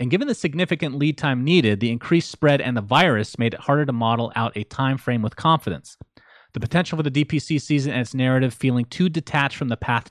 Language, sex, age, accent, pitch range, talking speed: English, male, 30-49, American, 115-150 Hz, 230 wpm